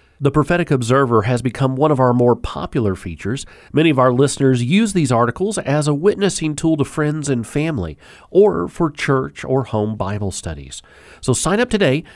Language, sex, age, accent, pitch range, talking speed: English, male, 40-59, American, 110-155 Hz, 185 wpm